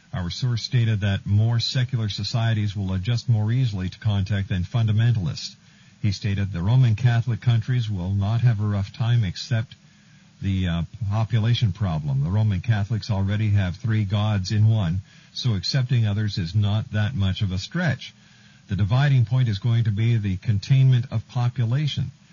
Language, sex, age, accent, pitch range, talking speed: English, male, 50-69, American, 105-130 Hz, 165 wpm